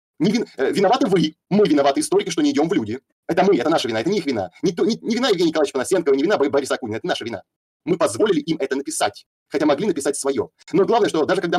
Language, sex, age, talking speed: Russian, male, 30-49, 255 wpm